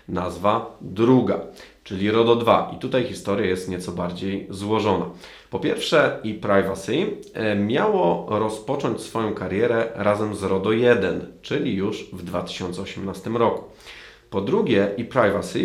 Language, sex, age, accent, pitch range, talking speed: Polish, male, 30-49, native, 95-115 Hz, 125 wpm